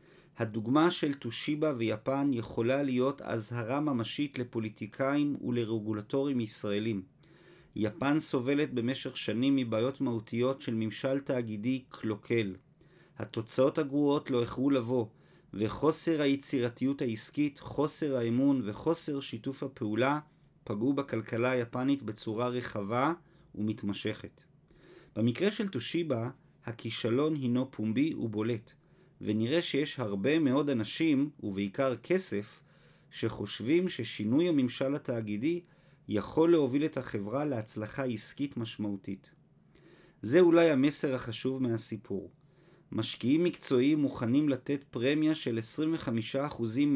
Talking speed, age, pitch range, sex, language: 100 wpm, 40-59, 115-150 Hz, male, Hebrew